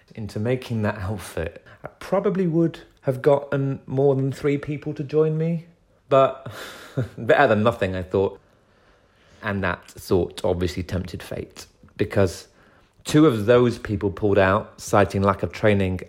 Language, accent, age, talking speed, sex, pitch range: English, British, 30-49, 145 wpm, male, 95-110 Hz